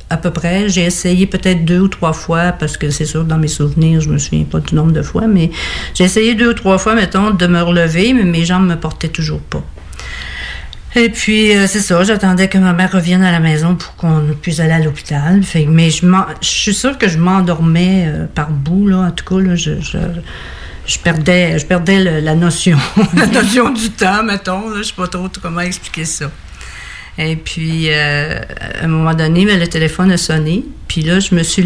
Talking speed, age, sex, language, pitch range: 210 wpm, 50-69, female, French, 155-185 Hz